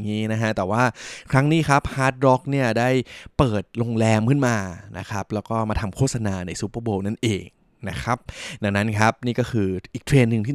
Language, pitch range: Thai, 100-125 Hz